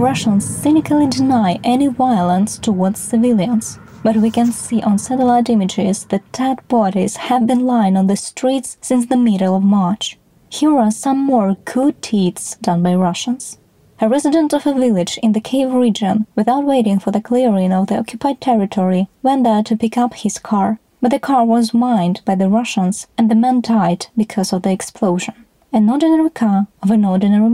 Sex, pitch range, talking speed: female, 200-250 Hz, 180 wpm